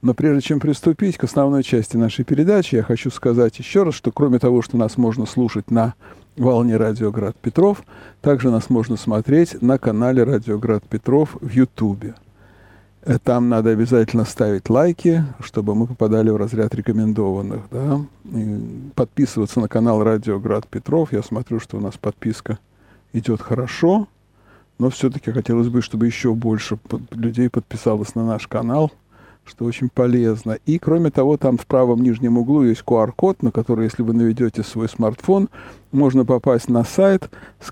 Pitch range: 110-135 Hz